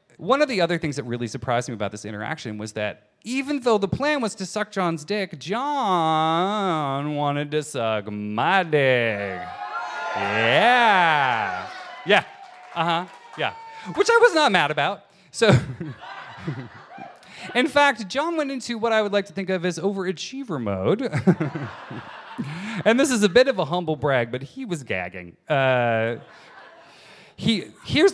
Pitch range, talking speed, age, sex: 130-200 Hz, 150 wpm, 30-49, male